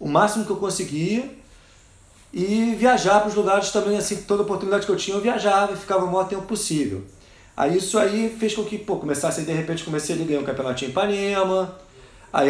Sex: male